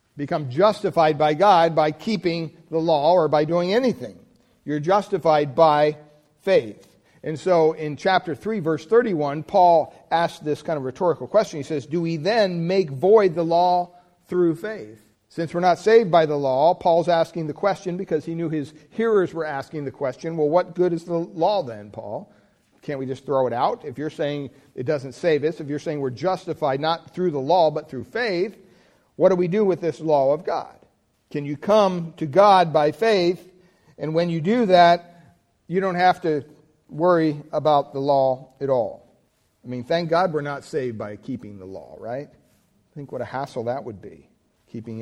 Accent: American